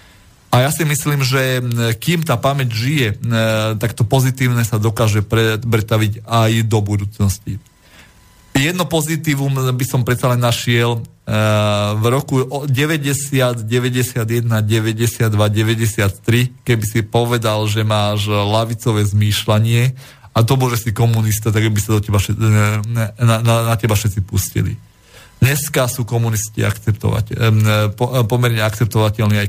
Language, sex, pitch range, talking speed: Slovak, male, 110-130 Hz, 130 wpm